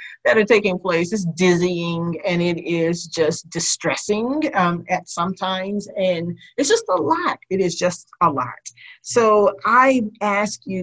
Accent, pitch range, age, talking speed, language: American, 170-205 Hz, 40-59, 160 wpm, English